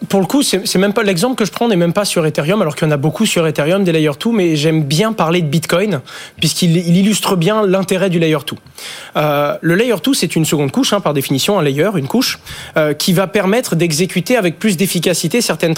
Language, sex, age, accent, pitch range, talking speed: French, male, 20-39, French, 150-195 Hz, 245 wpm